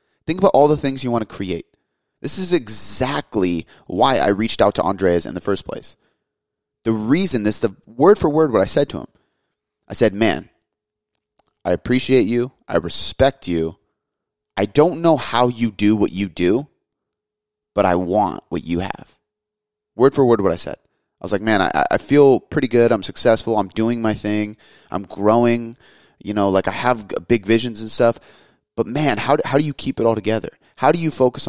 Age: 30-49